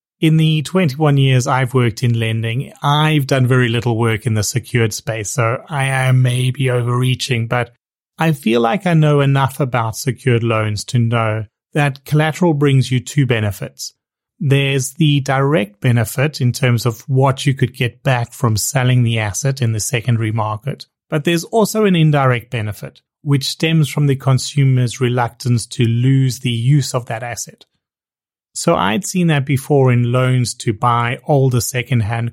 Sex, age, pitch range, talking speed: male, 30-49, 120-145 Hz, 165 wpm